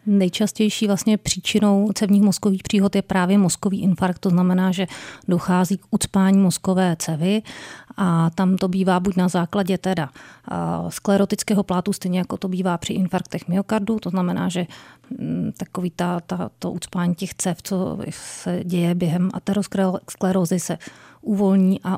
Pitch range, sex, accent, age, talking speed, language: 175-195 Hz, female, native, 30-49, 135 wpm, Czech